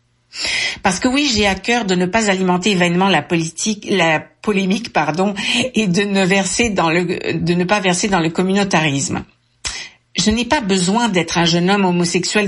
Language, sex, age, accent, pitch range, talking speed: French, female, 60-79, French, 170-205 Hz, 185 wpm